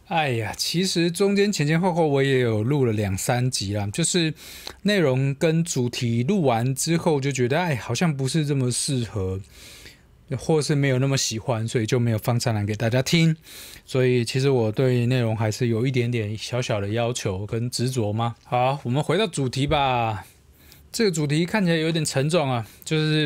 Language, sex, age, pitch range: Chinese, male, 20-39, 115-145 Hz